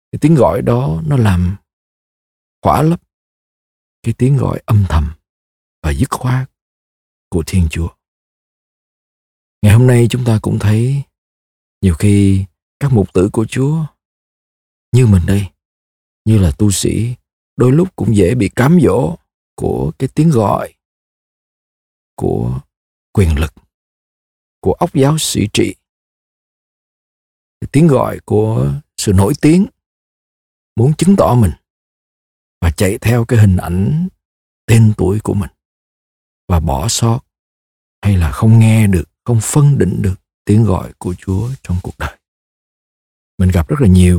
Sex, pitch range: male, 70-115 Hz